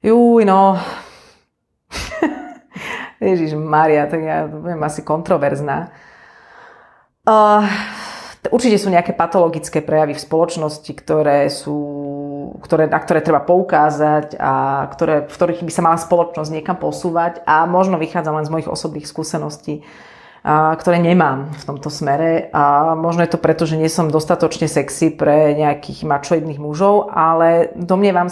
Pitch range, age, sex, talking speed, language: 155-180 Hz, 30-49, female, 135 wpm, Slovak